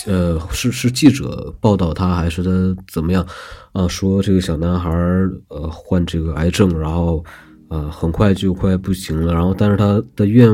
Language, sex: Chinese, male